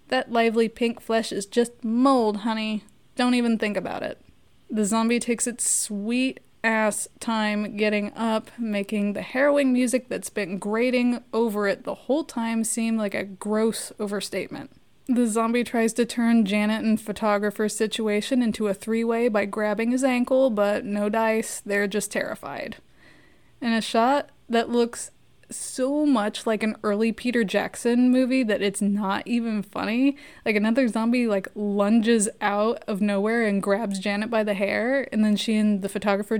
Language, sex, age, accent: English, female, 20-39, American